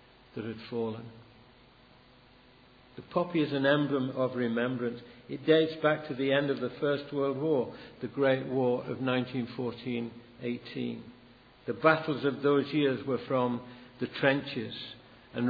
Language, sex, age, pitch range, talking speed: English, male, 60-79, 120-135 Hz, 145 wpm